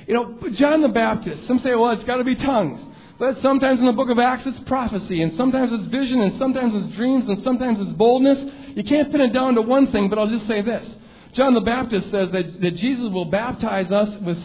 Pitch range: 220-275 Hz